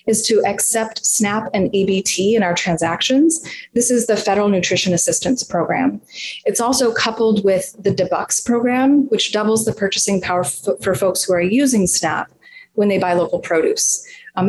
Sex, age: female, 30-49